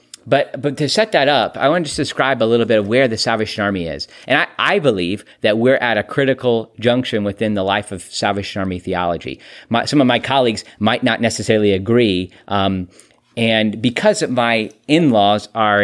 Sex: male